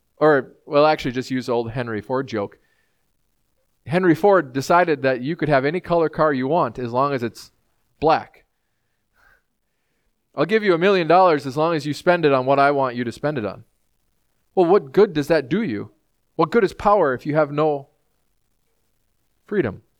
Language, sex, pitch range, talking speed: English, male, 135-195 Hz, 190 wpm